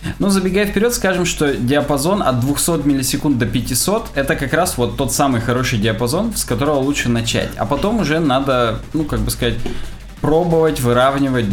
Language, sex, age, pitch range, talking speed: Russian, male, 20-39, 120-155 Hz, 170 wpm